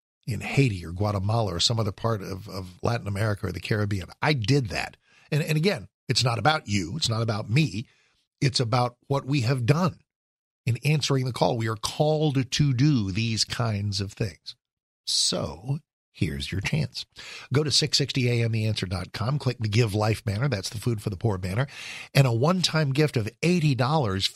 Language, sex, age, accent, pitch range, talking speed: English, male, 50-69, American, 110-150 Hz, 180 wpm